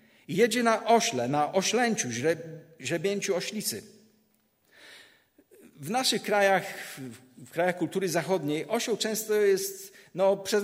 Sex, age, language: male, 50-69, Polish